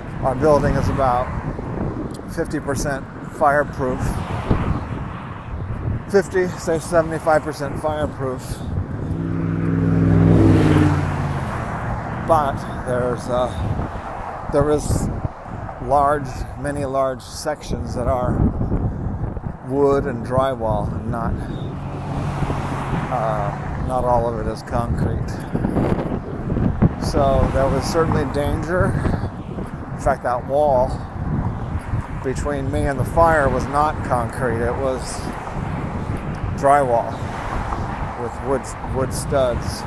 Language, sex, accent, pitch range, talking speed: English, male, American, 110-140 Hz, 85 wpm